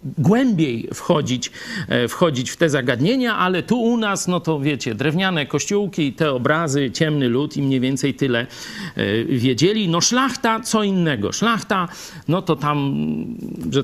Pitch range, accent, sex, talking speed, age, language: 130-180 Hz, native, male, 145 wpm, 50-69, Polish